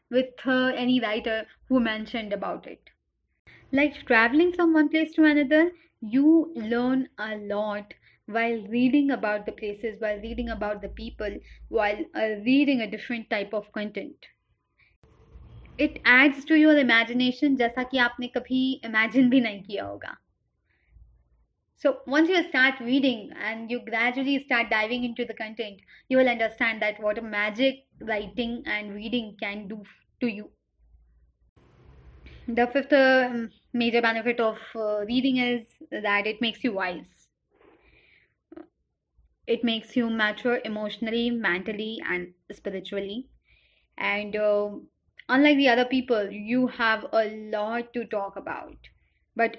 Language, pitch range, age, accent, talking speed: Hindi, 210-255 Hz, 20-39, native, 135 wpm